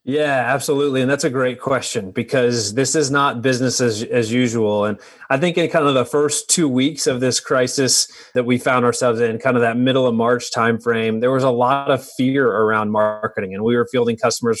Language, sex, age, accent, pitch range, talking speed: English, male, 30-49, American, 120-145 Hz, 220 wpm